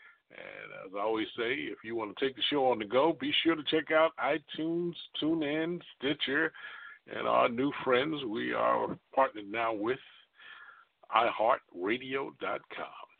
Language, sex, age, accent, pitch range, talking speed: English, male, 50-69, American, 115-165 Hz, 150 wpm